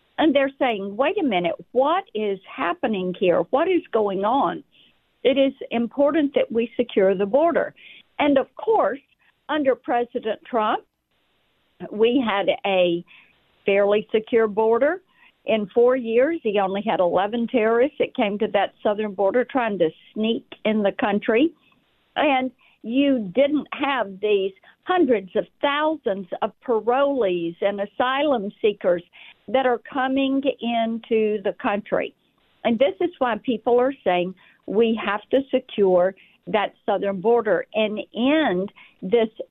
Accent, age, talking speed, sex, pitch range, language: American, 50-69, 135 wpm, female, 205-270 Hz, English